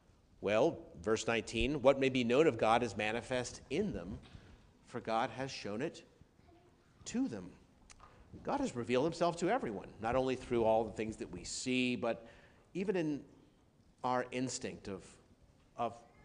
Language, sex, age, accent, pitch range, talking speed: English, male, 40-59, American, 105-135 Hz, 155 wpm